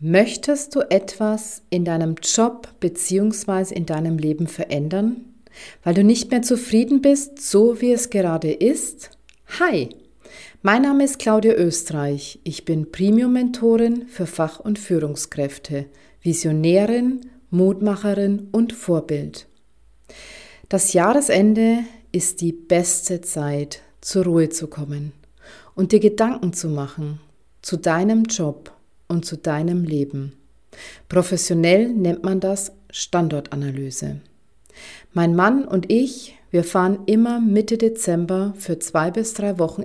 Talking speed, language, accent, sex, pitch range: 120 wpm, German, German, female, 165-215 Hz